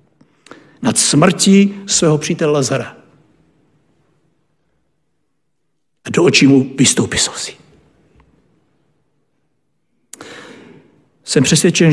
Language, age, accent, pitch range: Czech, 60-79, native, 145-195 Hz